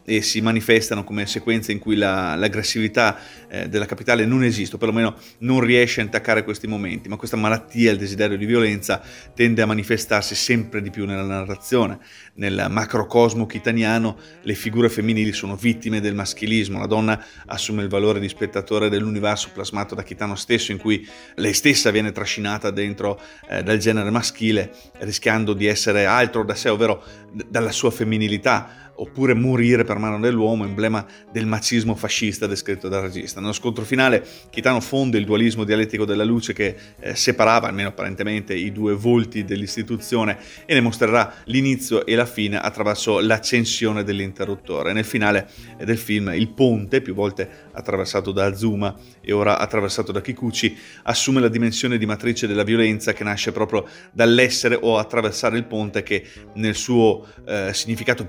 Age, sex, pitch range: 30-49, male, 105-115 Hz